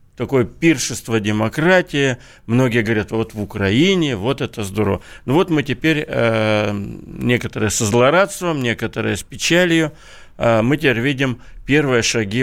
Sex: male